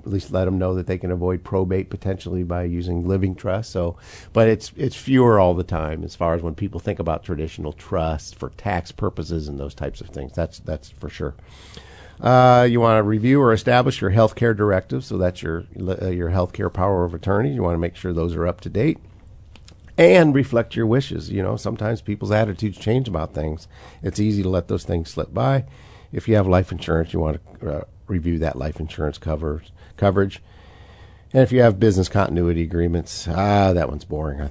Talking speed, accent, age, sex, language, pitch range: 215 wpm, American, 50-69, male, English, 80-105 Hz